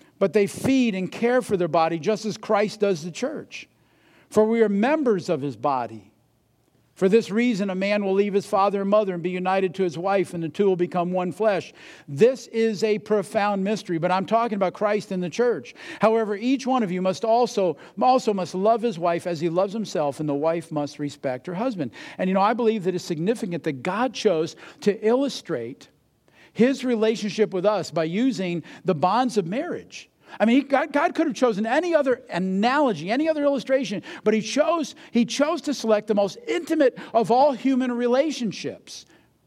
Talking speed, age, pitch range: 195 wpm, 50-69, 185-250 Hz